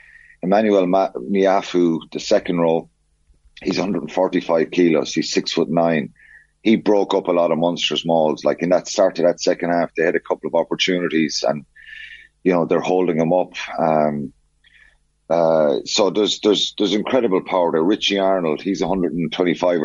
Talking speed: 165 wpm